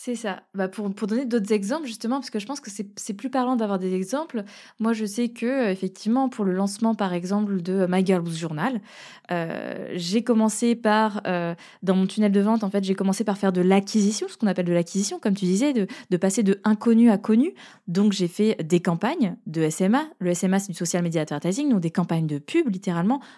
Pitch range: 185-235 Hz